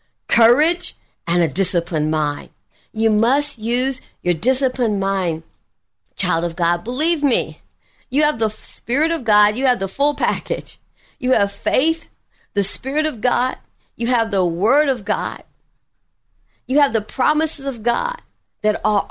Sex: female